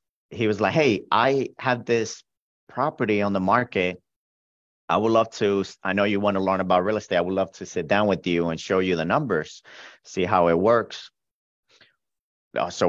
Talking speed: 195 wpm